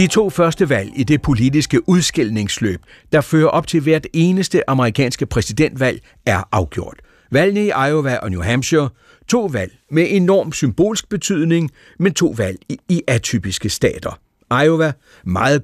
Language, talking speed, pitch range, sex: Danish, 145 wpm, 115-165 Hz, male